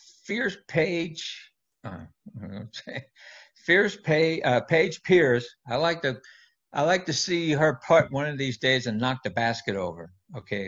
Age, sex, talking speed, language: 60-79, male, 165 wpm, English